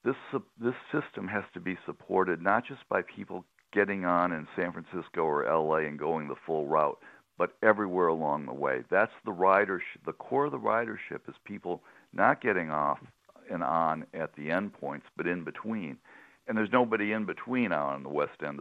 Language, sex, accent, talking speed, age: English, male, American, 190 wpm, 60-79